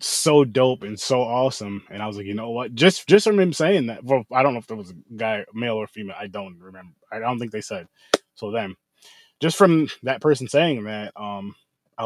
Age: 20-39